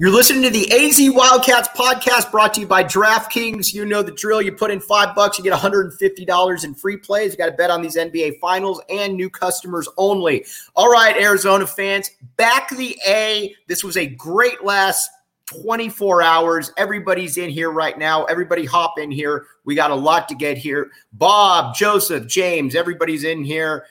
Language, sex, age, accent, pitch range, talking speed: English, male, 30-49, American, 150-205 Hz, 190 wpm